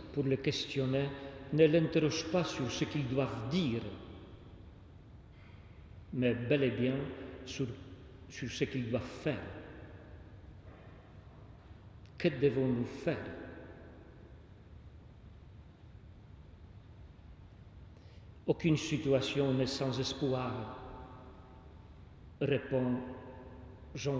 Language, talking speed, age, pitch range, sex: French, 75 wpm, 50-69, 100-145 Hz, male